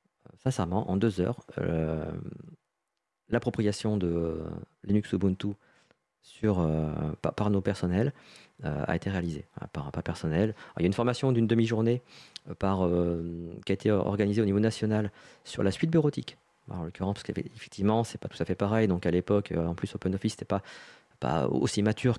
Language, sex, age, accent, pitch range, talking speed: French, male, 40-59, French, 90-110 Hz, 190 wpm